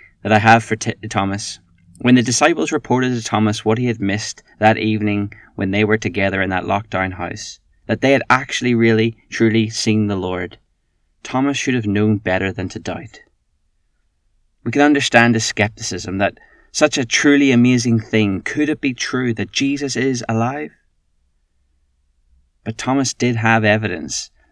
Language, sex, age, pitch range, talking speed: English, male, 30-49, 95-115 Hz, 160 wpm